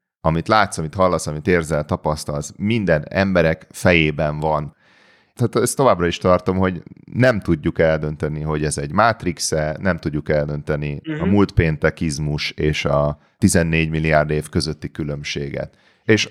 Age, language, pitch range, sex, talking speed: 30-49, Hungarian, 80-100 Hz, male, 140 wpm